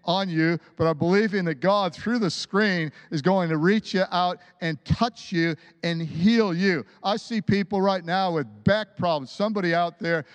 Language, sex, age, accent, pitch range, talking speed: English, male, 50-69, American, 170-220 Hz, 195 wpm